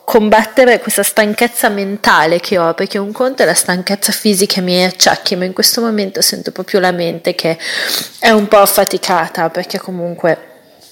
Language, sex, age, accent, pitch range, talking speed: Italian, female, 30-49, native, 180-215 Hz, 170 wpm